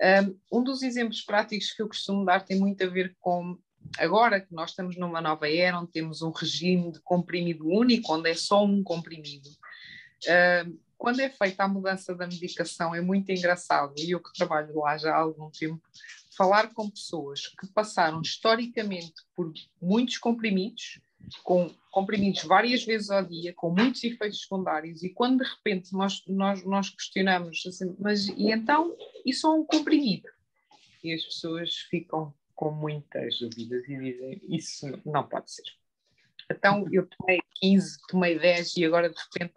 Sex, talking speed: female, 165 wpm